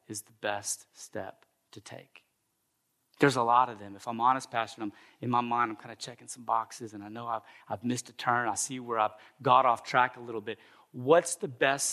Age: 30-49